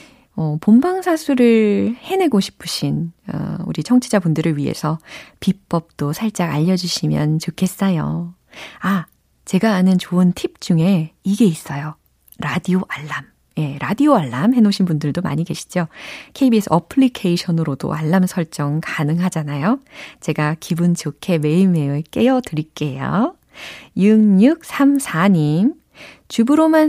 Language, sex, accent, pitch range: Korean, female, native, 165-250 Hz